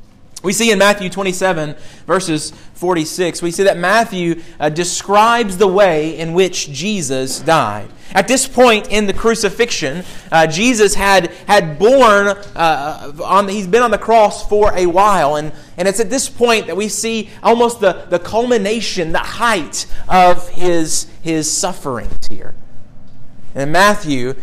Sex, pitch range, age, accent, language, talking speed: male, 165-215 Hz, 30-49, American, English, 155 wpm